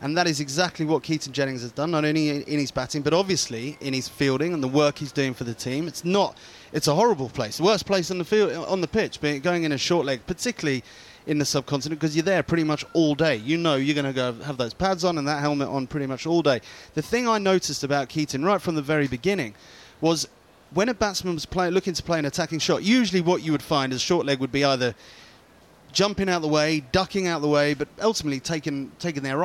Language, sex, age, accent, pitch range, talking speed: English, male, 30-49, British, 140-170 Hz, 245 wpm